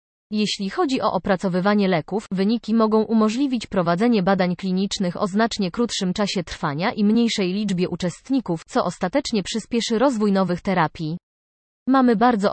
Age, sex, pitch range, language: 30-49, female, 180-220 Hz, Polish